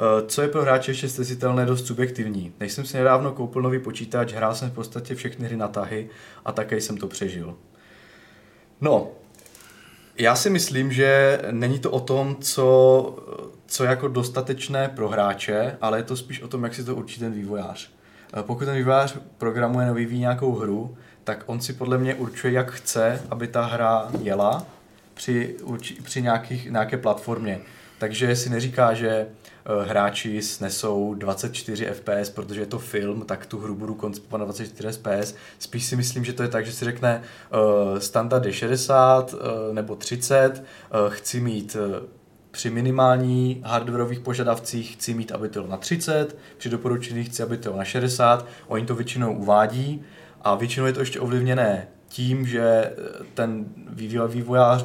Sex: male